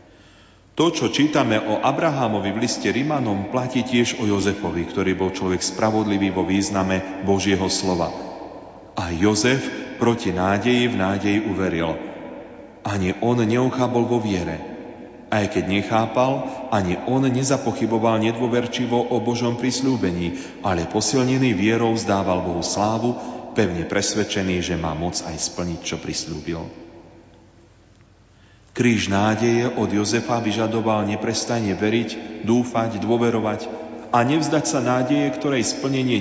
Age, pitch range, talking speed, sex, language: 40-59, 95-120 Hz, 120 wpm, male, Slovak